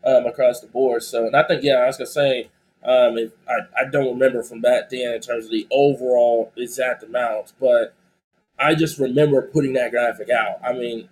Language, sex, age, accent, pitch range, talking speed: English, male, 20-39, American, 130-165 Hz, 205 wpm